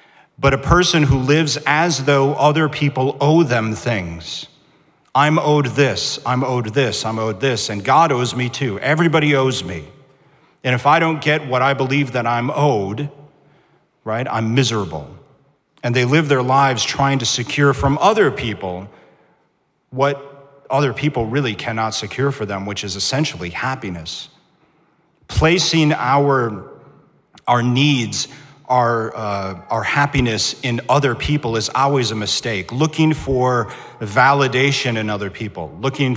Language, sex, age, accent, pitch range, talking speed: English, male, 40-59, American, 110-140 Hz, 145 wpm